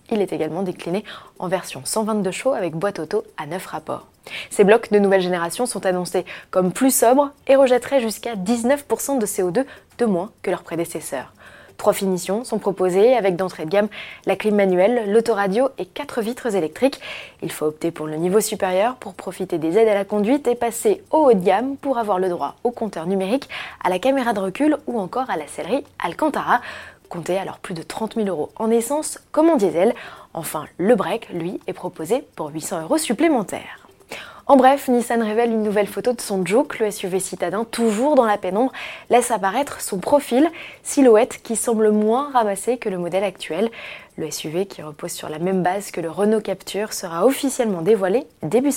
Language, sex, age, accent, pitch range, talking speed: French, female, 20-39, French, 185-245 Hz, 195 wpm